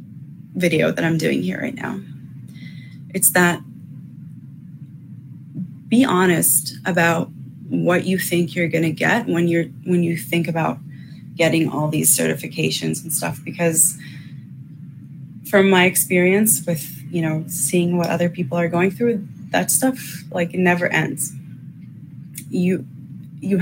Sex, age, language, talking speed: female, 20-39, English, 135 wpm